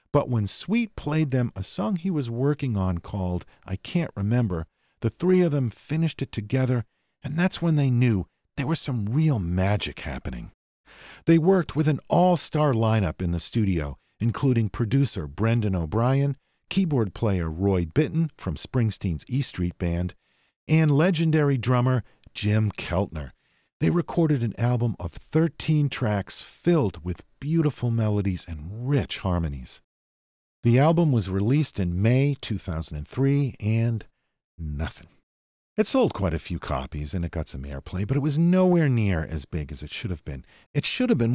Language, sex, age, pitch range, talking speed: English, male, 50-69, 90-145 Hz, 160 wpm